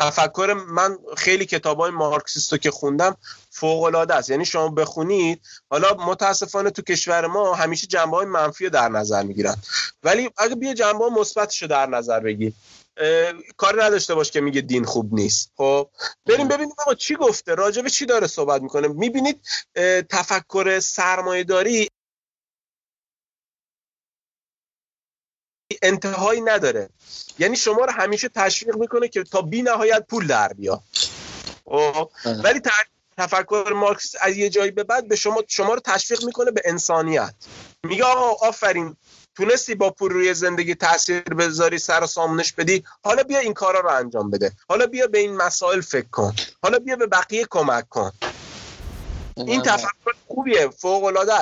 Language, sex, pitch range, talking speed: Persian, male, 160-220 Hz, 140 wpm